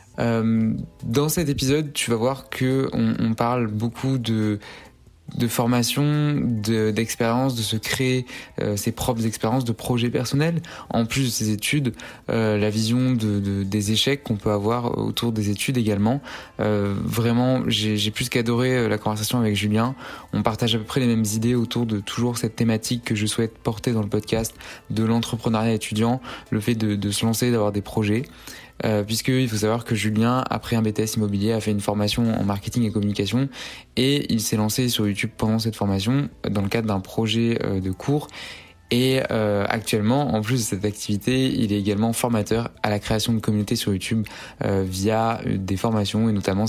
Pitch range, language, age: 105-120 Hz, French, 20-39